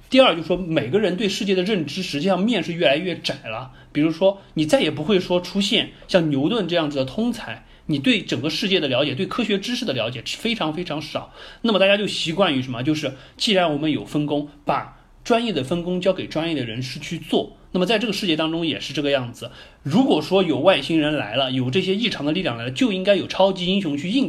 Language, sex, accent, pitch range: Chinese, male, native, 145-205 Hz